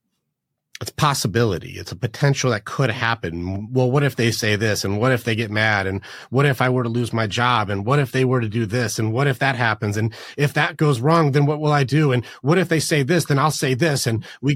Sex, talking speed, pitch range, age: male, 265 wpm, 105-135 Hz, 30-49